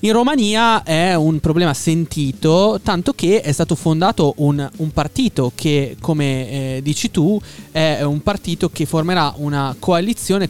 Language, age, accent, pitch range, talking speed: Italian, 20-39, native, 130-175 Hz, 150 wpm